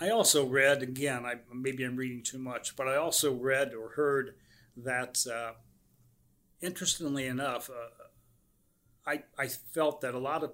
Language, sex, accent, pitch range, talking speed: English, male, American, 125-150 Hz, 160 wpm